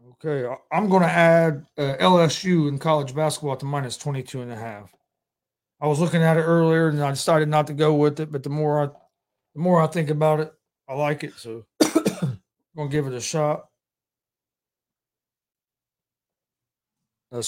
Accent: American